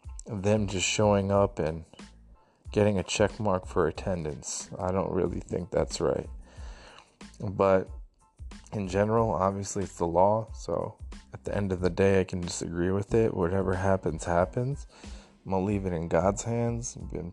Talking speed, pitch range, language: 170 wpm, 90-105 Hz, English